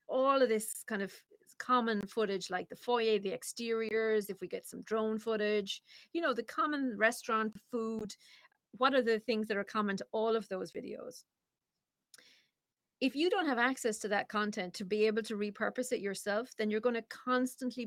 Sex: female